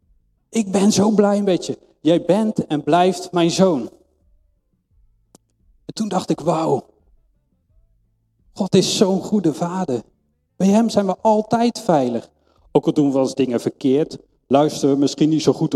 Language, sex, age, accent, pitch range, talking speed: Dutch, male, 40-59, Dutch, 120-195 Hz, 155 wpm